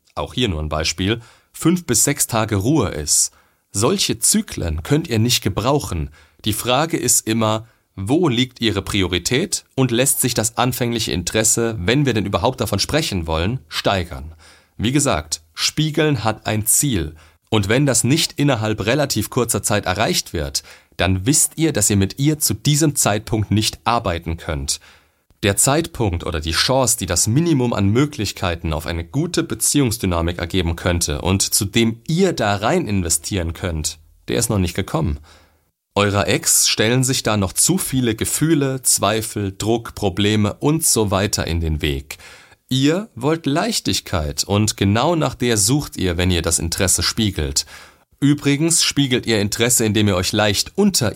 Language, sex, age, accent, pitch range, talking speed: German, male, 30-49, German, 90-130 Hz, 160 wpm